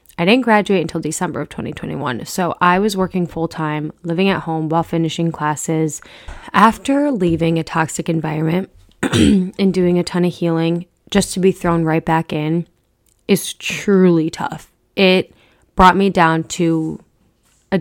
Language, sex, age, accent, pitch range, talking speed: English, female, 20-39, American, 160-185 Hz, 150 wpm